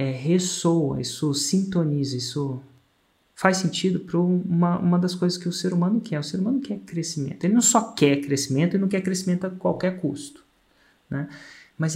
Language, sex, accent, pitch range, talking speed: Portuguese, male, Brazilian, 140-195 Hz, 180 wpm